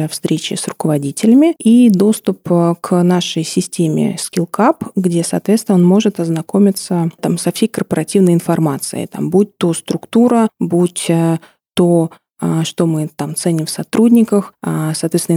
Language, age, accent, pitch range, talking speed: Russian, 20-39, native, 170-200 Hz, 115 wpm